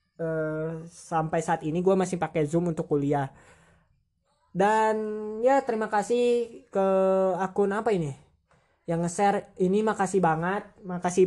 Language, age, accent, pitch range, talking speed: Indonesian, 20-39, native, 160-185 Hz, 130 wpm